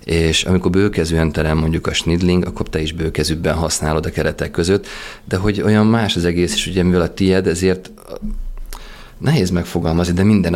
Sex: male